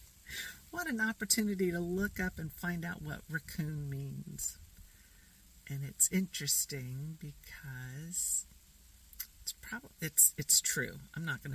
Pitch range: 105-165 Hz